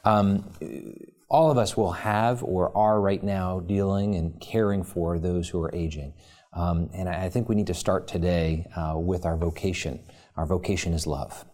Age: 40-59